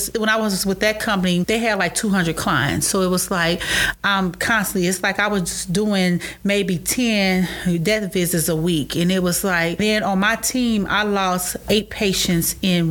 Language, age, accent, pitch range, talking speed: English, 30-49, American, 185-220 Hz, 195 wpm